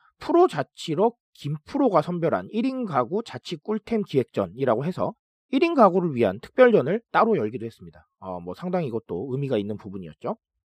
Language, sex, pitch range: Korean, male, 140-235 Hz